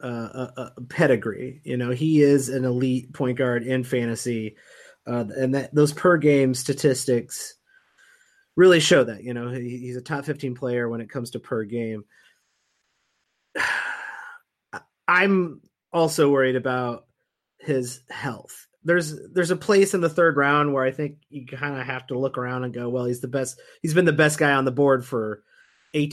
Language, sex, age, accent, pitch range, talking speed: English, male, 30-49, American, 125-170 Hz, 180 wpm